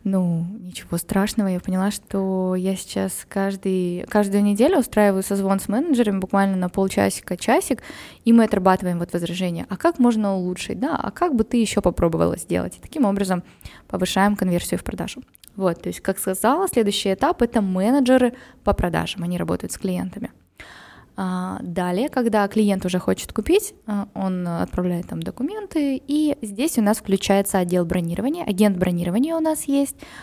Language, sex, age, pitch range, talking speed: Russian, female, 20-39, 185-225 Hz, 155 wpm